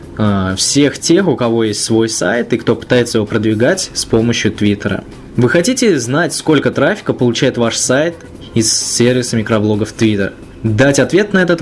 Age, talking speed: 20-39, 160 wpm